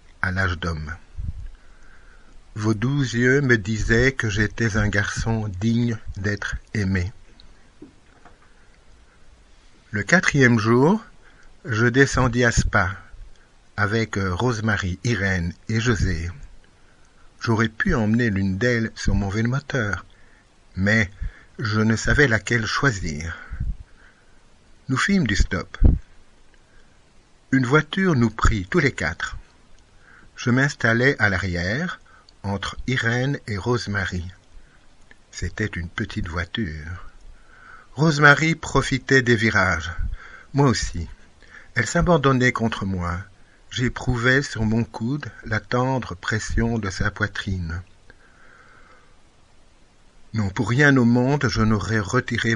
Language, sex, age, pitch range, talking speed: French, male, 60-79, 90-120 Hz, 105 wpm